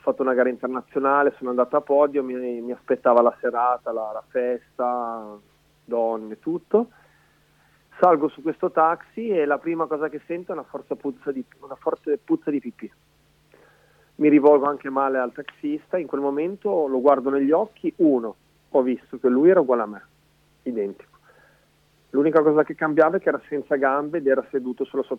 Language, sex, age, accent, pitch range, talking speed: Italian, male, 40-59, native, 125-150 Hz, 180 wpm